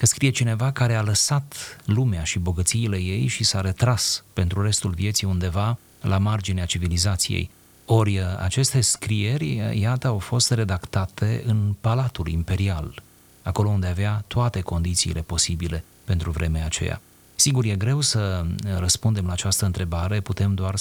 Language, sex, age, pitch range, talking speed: Romanian, male, 30-49, 95-115 Hz, 140 wpm